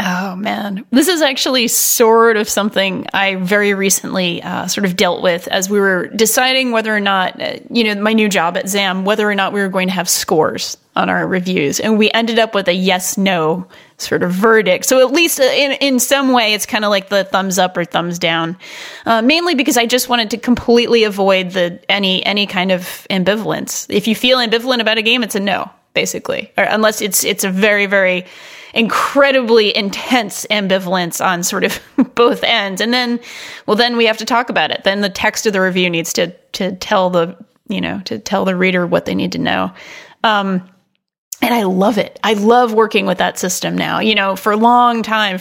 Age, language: 30-49, English